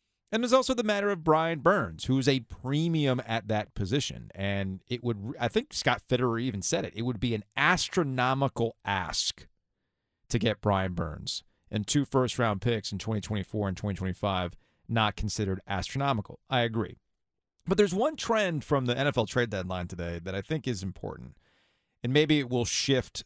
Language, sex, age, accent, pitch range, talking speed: English, male, 30-49, American, 100-145 Hz, 175 wpm